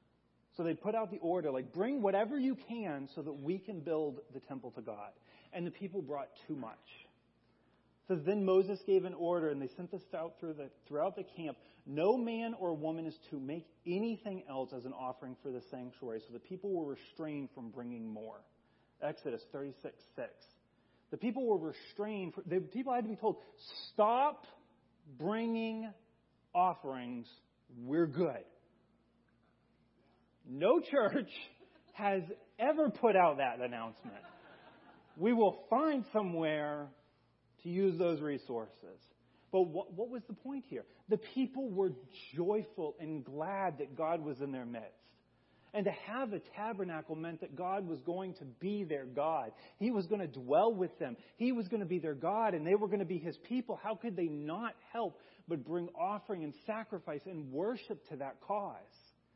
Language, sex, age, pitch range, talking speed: English, male, 40-59, 145-215 Hz, 170 wpm